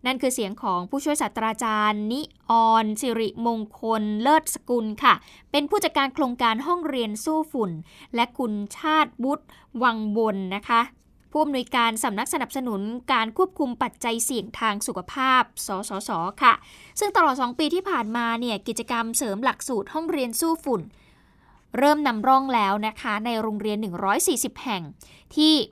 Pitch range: 215-275 Hz